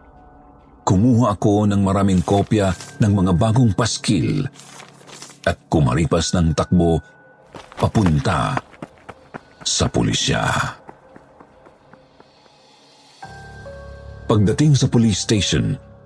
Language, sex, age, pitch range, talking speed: Filipino, male, 50-69, 85-110 Hz, 75 wpm